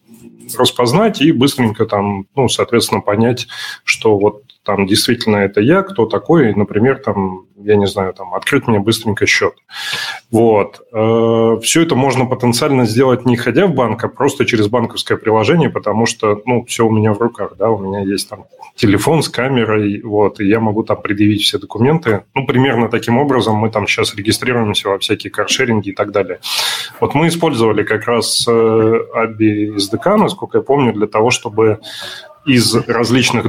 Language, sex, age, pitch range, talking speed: Russian, male, 20-39, 105-125 Hz, 170 wpm